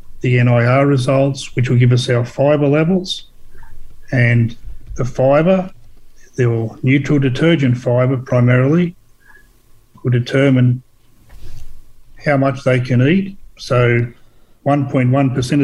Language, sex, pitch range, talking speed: English, male, 125-140 Hz, 105 wpm